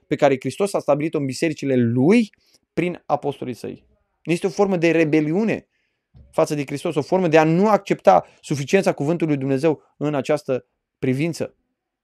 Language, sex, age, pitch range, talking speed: Romanian, male, 20-39, 135-185 Hz, 155 wpm